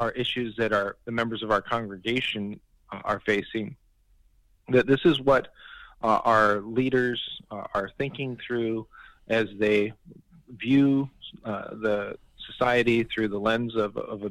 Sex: male